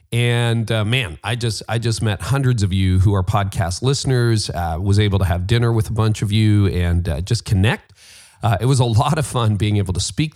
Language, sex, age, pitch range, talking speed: English, male, 40-59, 100-125 Hz, 235 wpm